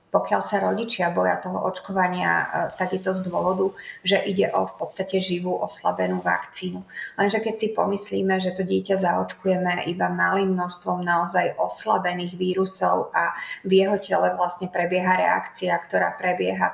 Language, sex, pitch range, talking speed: Slovak, female, 175-190 Hz, 145 wpm